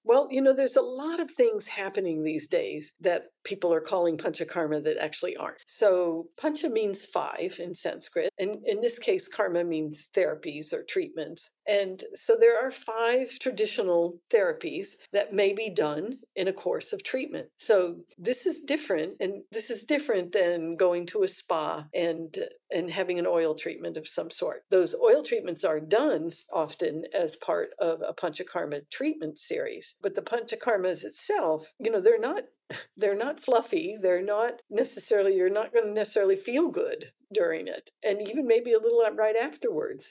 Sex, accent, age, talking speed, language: female, American, 50-69, 170 wpm, English